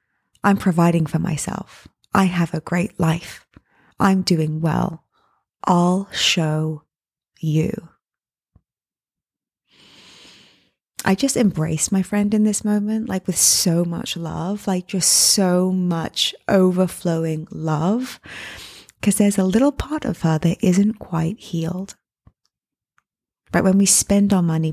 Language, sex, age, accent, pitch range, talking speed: English, female, 20-39, British, 165-195 Hz, 125 wpm